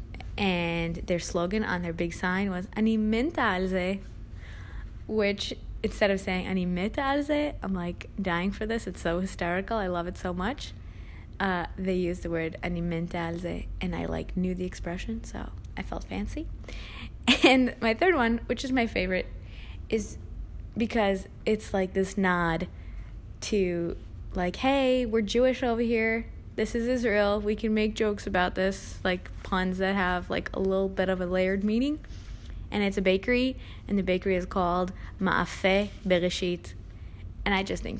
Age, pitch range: 20-39, 170-220 Hz